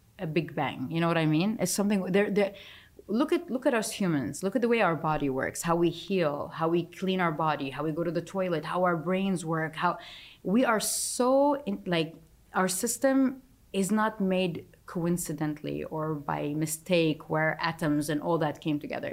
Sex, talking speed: female, 205 wpm